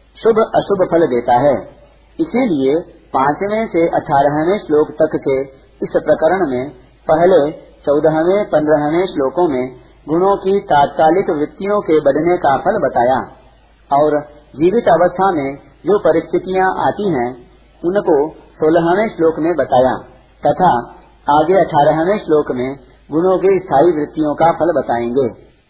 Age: 50-69